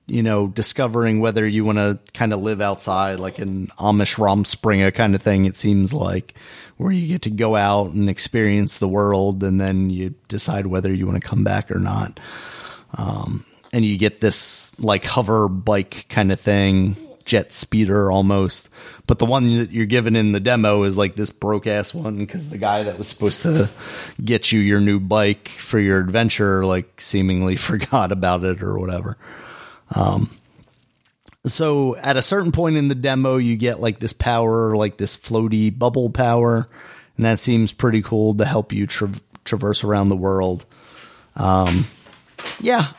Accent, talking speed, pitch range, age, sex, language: American, 180 wpm, 100-120 Hz, 30-49, male, English